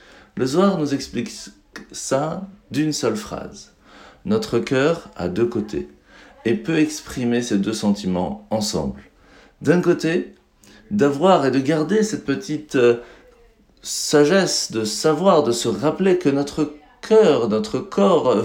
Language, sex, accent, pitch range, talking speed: French, male, French, 105-155 Hz, 130 wpm